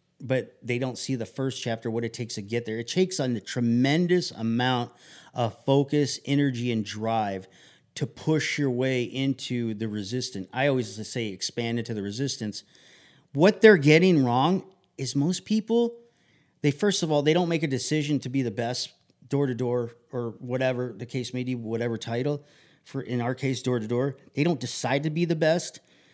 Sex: male